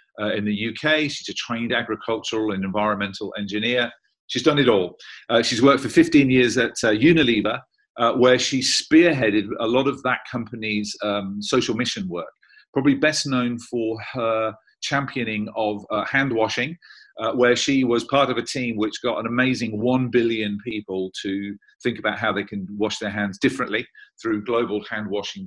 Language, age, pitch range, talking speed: English, 40-59, 100-125 Hz, 180 wpm